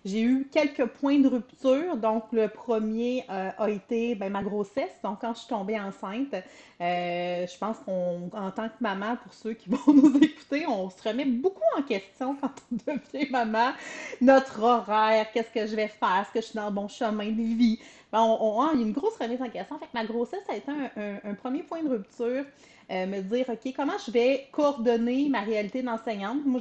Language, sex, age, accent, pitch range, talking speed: French, female, 30-49, Canadian, 210-255 Hz, 215 wpm